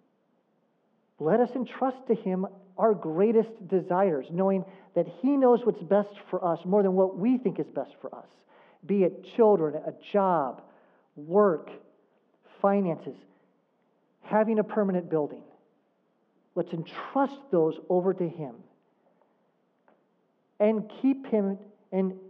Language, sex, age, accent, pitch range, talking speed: English, male, 40-59, American, 155-210 Hz, 125 wpm